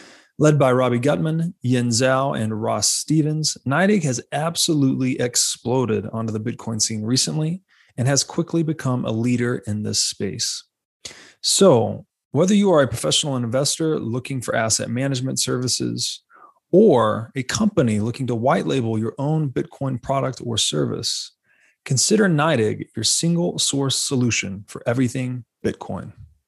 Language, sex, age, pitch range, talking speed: English, male, 30-49, 110-140 Hz, 140 wpm